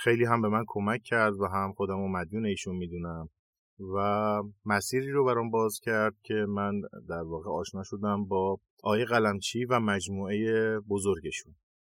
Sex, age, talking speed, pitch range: male, 30-49, 155 wpm, 100-125 Hz